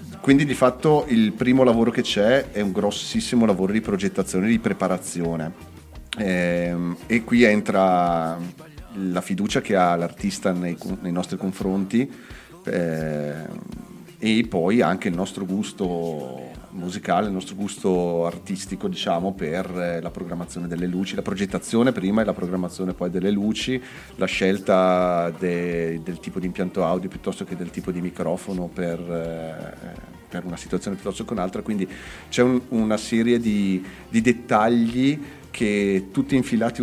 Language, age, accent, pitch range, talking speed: Italian, 30-49, native, 85-110 Hz, 140 wpm